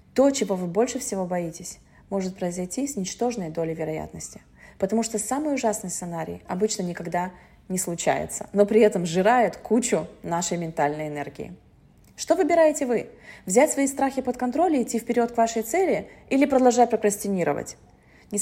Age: 20-39